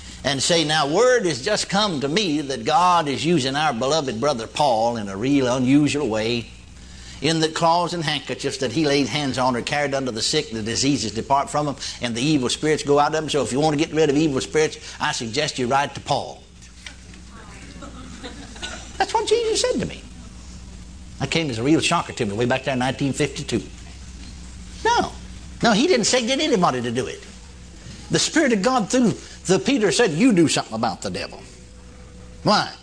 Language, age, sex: English, 60-79, male